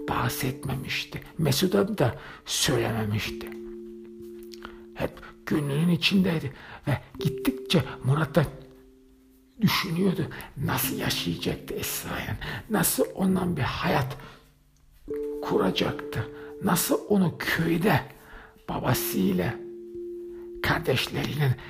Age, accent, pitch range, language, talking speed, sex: 60-79, native, 115-165 Hz, Turkish, 65 wpm, male